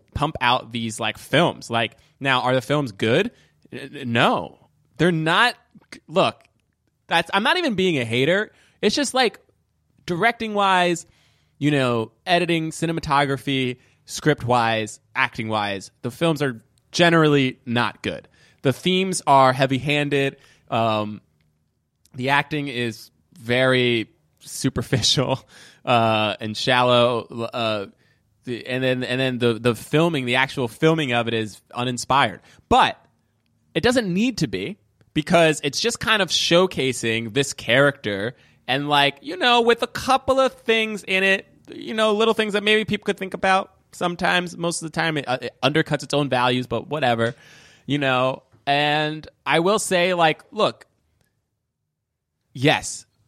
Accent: American